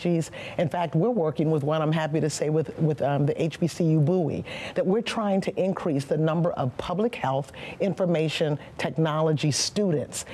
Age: 50-69